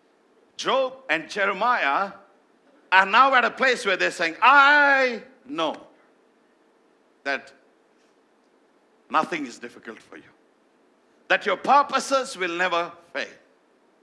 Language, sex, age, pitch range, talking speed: English, male, 60-79, 185-260 Hz, 105 wpm